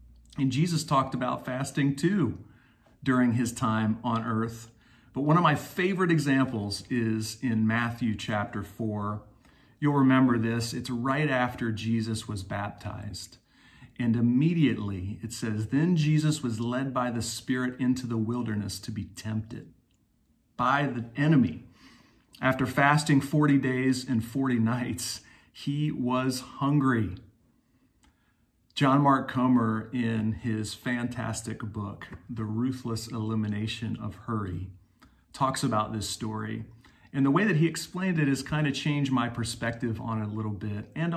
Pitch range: 110-135 Hz